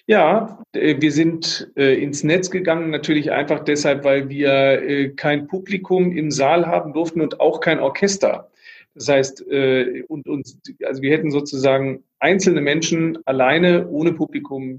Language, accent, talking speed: German, German, 140 wpm